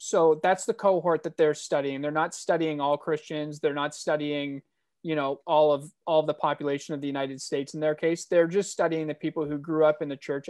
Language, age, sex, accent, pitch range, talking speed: English, 30-49, male, American, 150-180 Hz, 235 wpm